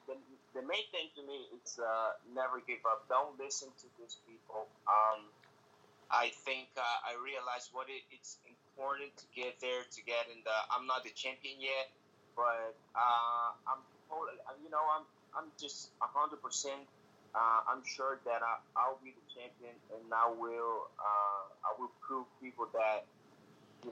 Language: English